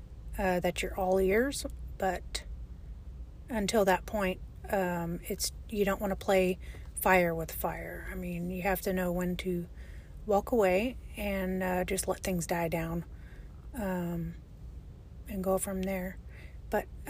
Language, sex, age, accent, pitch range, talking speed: English, female, 30-49, American, 185-215 Hz, 145 wpm